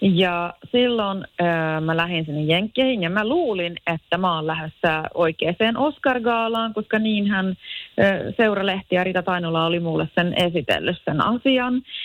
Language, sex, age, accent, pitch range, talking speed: Finnish, female, 30-49, native, 165-220 Hz, 145 wpm